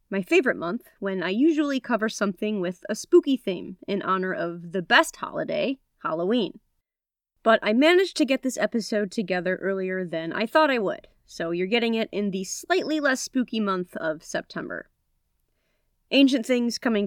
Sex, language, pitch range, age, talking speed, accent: female, English, 195-265 Hz, 30-49, 170 wpm, American